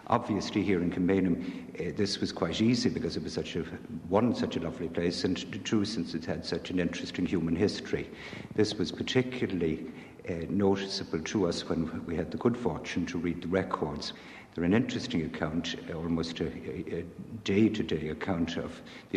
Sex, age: male, 60-79